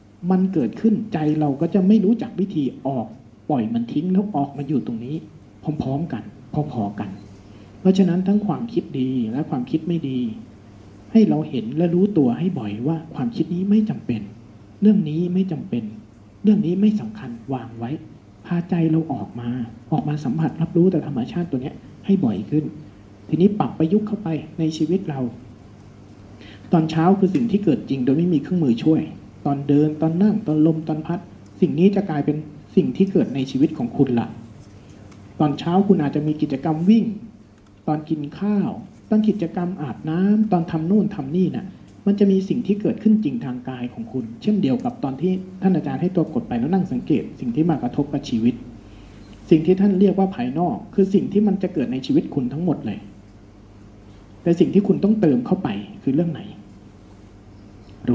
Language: Thai